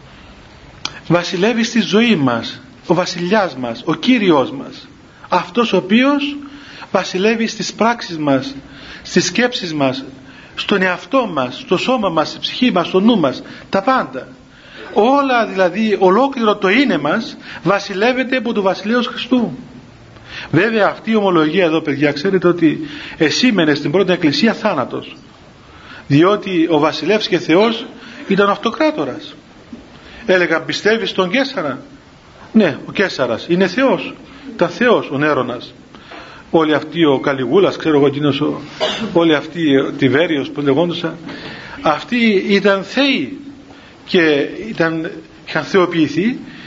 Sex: male